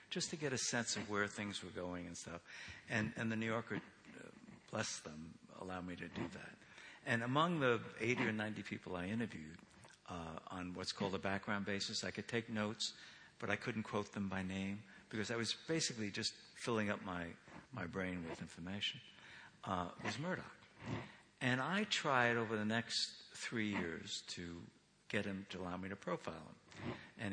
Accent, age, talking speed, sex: American, 60-79, 185 wpm, male